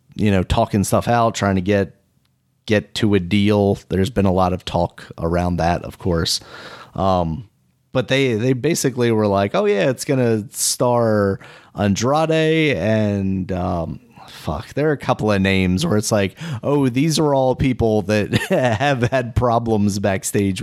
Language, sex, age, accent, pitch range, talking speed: English, male, 30-49, American, 95-130 Hz, 165 wpm